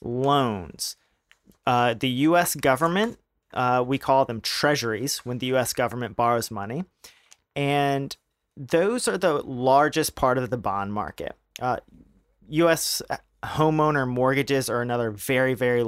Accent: American